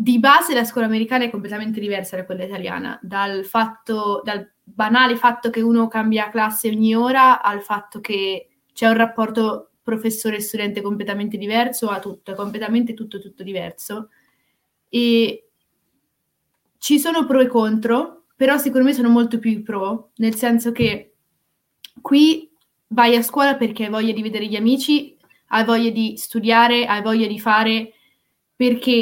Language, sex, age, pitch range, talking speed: Italian, female, 20-39, 210-240 Hz, 155 wpm